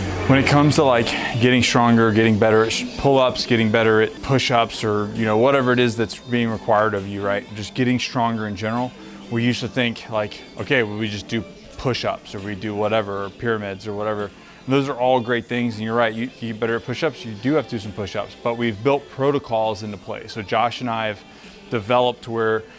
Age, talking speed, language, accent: 20-39, 225 wpm, English, American